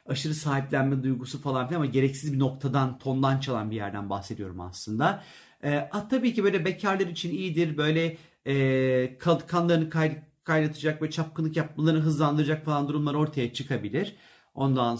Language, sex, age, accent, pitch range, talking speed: Turkish, male, 40-59, native, 130-175 Hz, 150 wpm